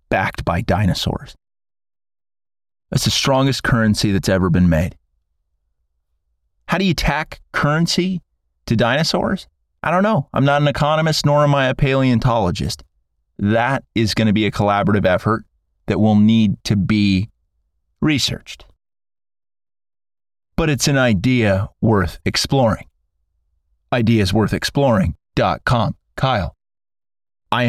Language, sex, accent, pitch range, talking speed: English, male, American, 85-115 Hz, 115 wpm